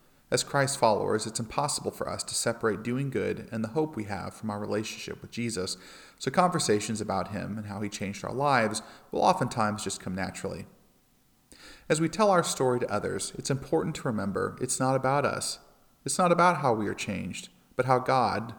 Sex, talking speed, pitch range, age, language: male, 195 wpm, 105-140 Hz, 40-59, English